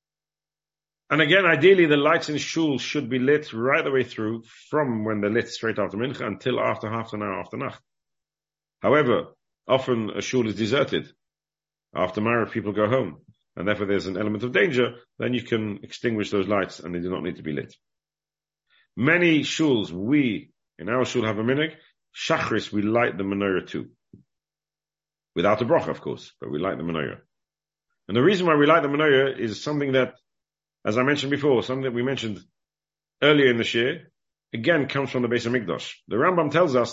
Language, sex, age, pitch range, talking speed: English, male, 50-69, 110-145 Hz, 195 wpm